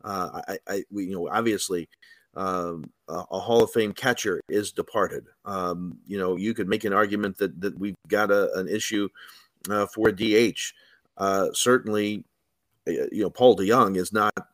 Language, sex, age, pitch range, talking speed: English, male, 40-59, 105-140 Hz, 180 wpm